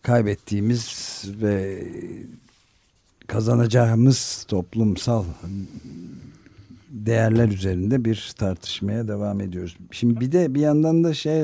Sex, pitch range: male, 100-120 Hz